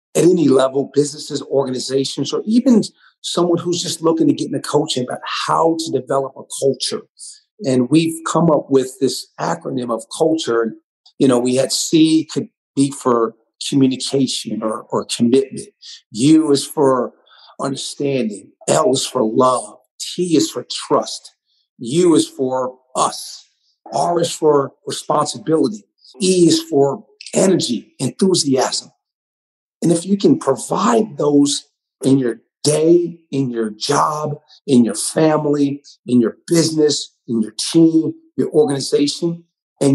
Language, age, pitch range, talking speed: English, 50-69, 135-165 Hz, 135 wpm